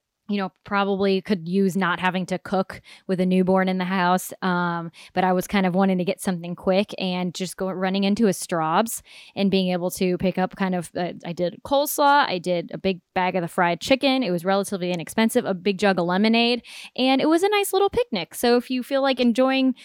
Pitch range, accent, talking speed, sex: 185-240 Hz, American, 235 wpm, female